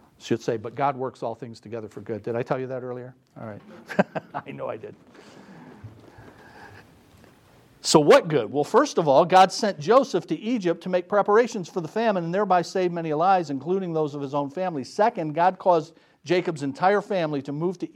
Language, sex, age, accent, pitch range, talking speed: English, male, 50-69, American, 130-185 Hz, 200 wpm